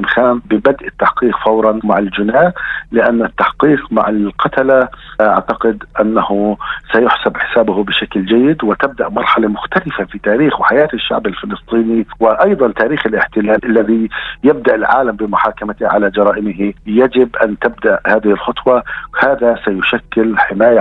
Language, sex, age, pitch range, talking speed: Arabic, male, 50-69, 100-115 Hz, 115 wpm